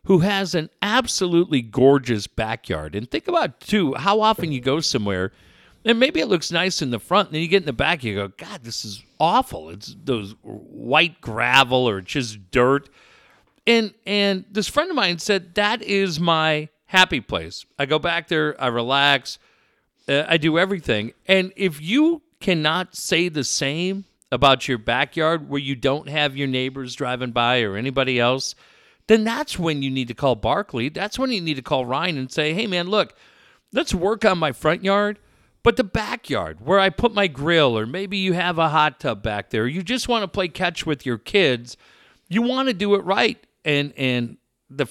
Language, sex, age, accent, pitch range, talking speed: English, male, 50-69, American, 125-190 Hz, 200 wpm